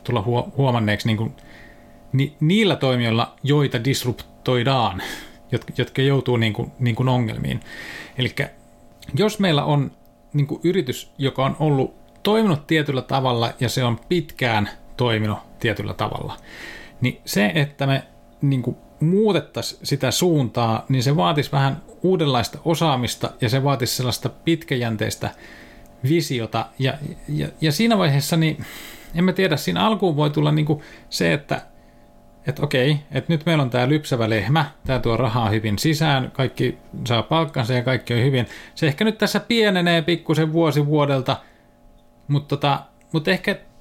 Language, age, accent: Finnish, 30-49, native